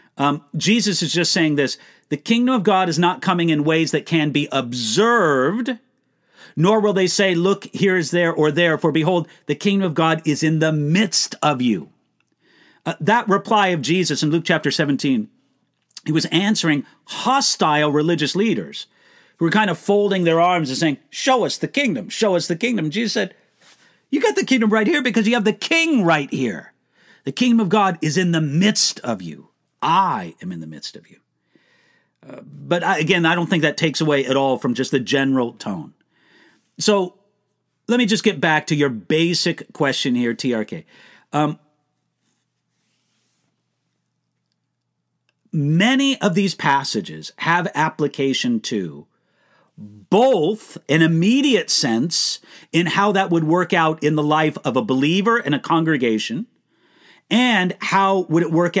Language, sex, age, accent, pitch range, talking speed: English, male, 50-69, American, 150-205 Hz, 170 wpm